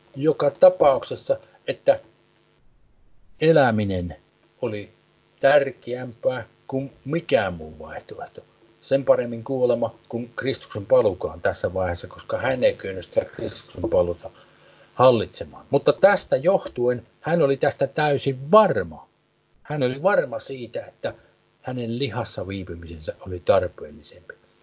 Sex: male